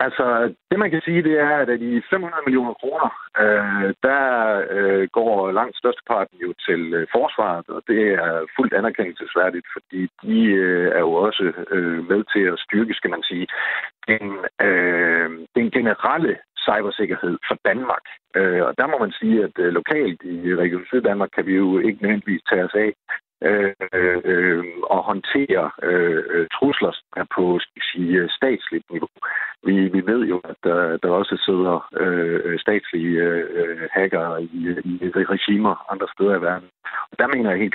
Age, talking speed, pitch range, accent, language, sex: 50-69, 165 wpm, 85-120 Hz, native, Danish, male